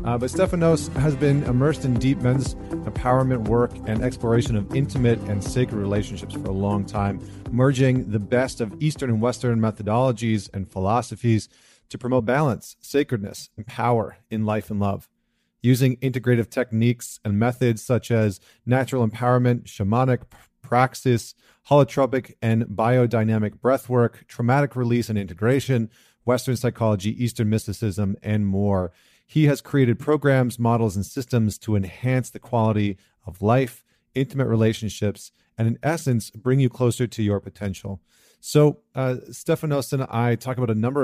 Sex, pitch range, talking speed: male, 105-130 Hz, 145 wpm